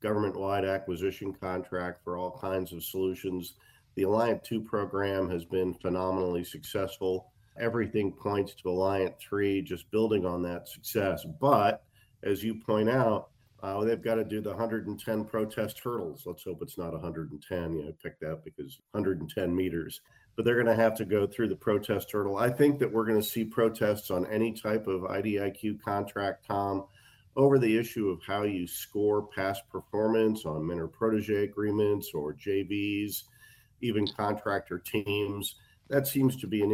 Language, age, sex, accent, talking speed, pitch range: English, 50-69, male, American, 165 wpm, 95-110 Hz